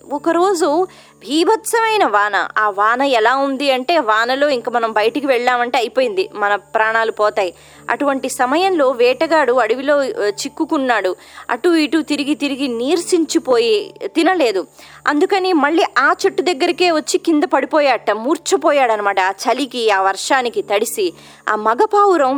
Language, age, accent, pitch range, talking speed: Telugu, 20-39, native, 240-350 Hz, 120 wpm